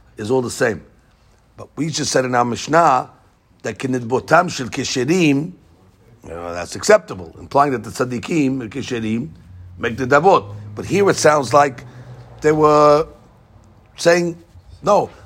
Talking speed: 140 wpm